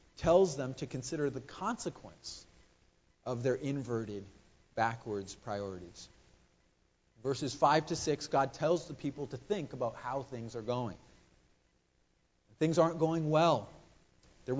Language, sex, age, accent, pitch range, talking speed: English, male, 40-59, American, 130-175 Hz, 125 wpm